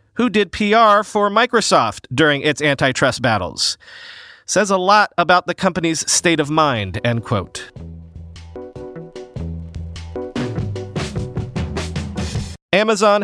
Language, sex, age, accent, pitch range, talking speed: English, male, 40-59, American, 135-185 Hz, 95 wpm